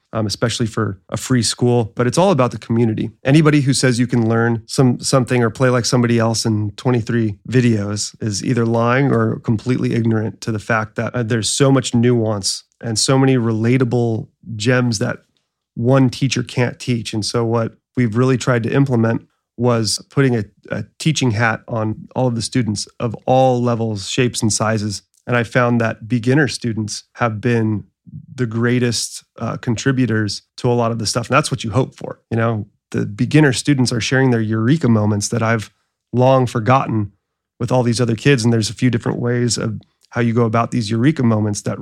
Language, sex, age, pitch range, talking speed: English, male, 30-49, 110-125 Hz, 195 wpm